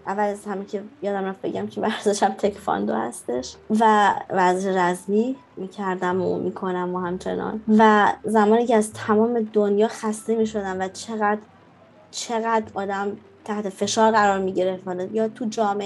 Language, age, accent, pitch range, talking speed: English, 20-39, Canadian, 195-235 Hz, 145 wpm